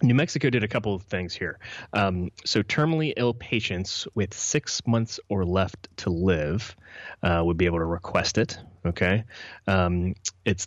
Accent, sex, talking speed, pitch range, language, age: American, male, 170 wpm, 85-110 Hz, English, 30-49